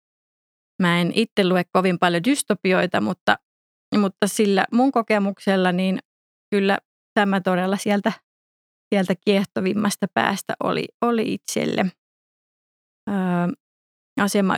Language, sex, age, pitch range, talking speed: Finnish, female, 20-39, 190-225 Hz, 105 wpm